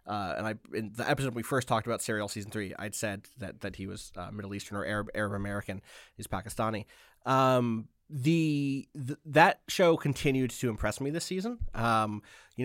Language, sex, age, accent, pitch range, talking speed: English, male, 30-49, American, 105-130 Hz, 195 wpm